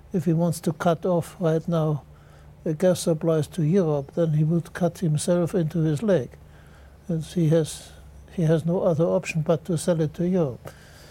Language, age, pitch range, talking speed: English, 60-79, 150-175 Hz, 190 wpm